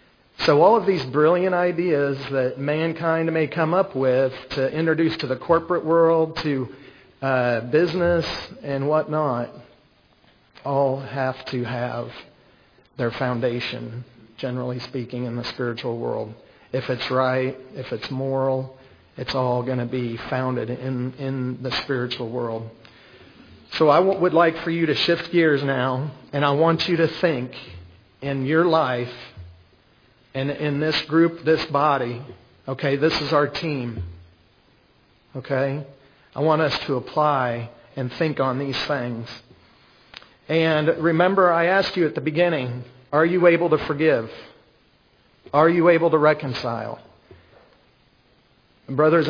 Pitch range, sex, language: 125-160 Hz, male, English